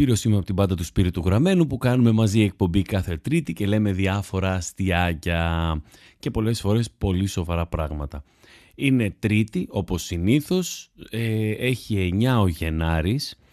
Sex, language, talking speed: male, Greek, 140 wpm